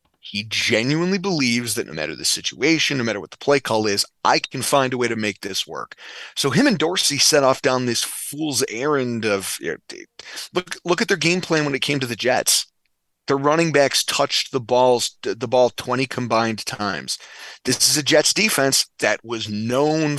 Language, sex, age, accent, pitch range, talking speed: English, male, 30-49, American, 120-160 Hz, 195 wpm